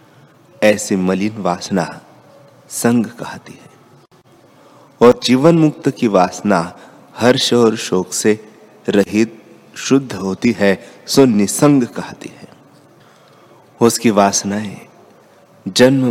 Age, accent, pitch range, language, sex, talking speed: 30-49, native, 100-125 Hz, Hindi, male, 95 wpm